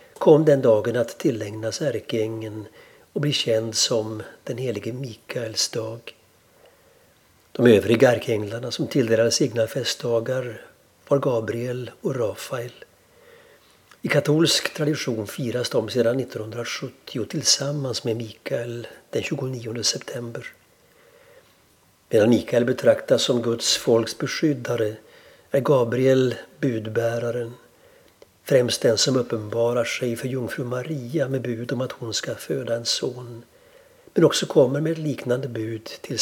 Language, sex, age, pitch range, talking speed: Swedish, male, 60-79, 115-145 Hz, 120 wpm